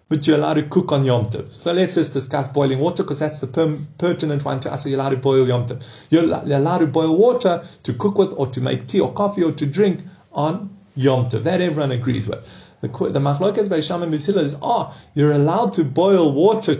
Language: English